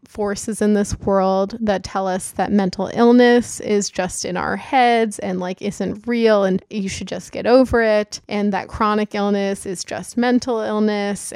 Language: English